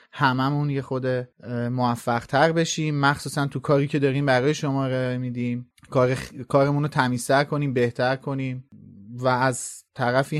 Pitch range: 125-145 Hz